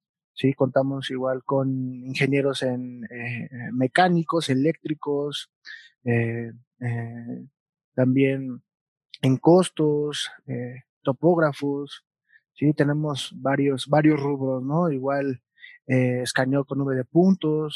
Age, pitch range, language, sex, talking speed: 20-39, 130-150 Hz, English, male, 100 wpm